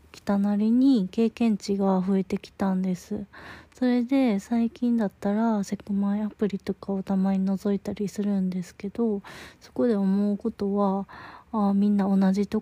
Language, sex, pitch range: Japanese, female, 195-220 Hz